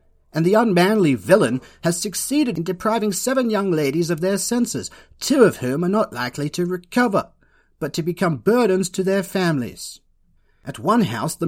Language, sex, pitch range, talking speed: English, male, 150-215 Hz, 175 wpm